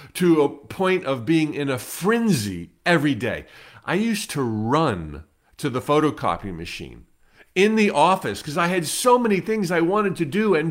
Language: English